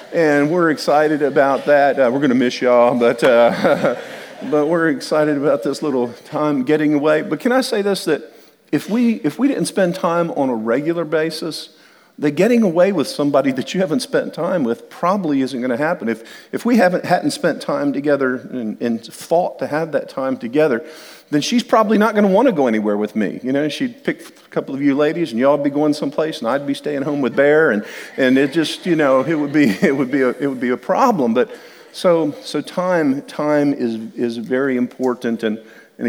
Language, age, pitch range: English, 50-69, 130-175 Hz